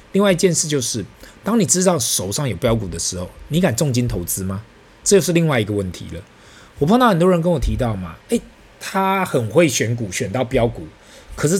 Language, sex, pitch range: Chinese, male, 100-150 Hz